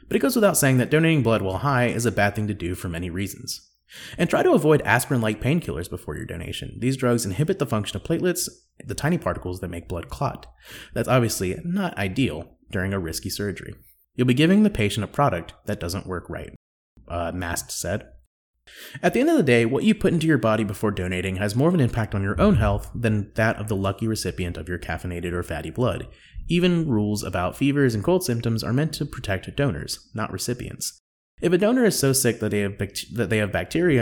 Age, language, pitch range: 30-49, English, 95-130 Hz